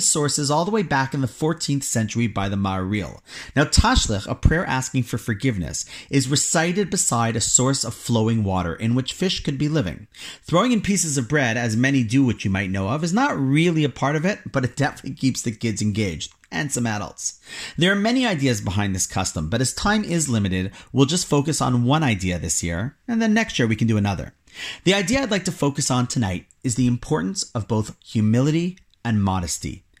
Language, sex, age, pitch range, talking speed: English, male, 40-59, 110-155 Hz, 215 wpm